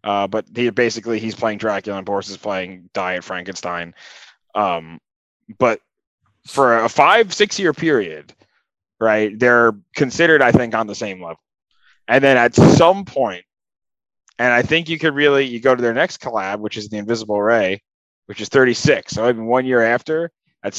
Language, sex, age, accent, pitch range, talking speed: English, male, 20-39, American, 105-130 Hz, 180 wpm